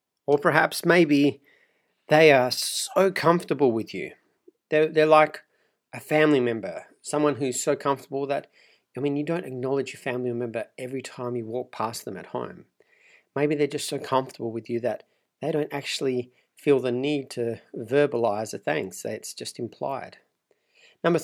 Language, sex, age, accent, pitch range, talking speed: English, male, 40-59, Australian, 125-155 Hz, 165 wpm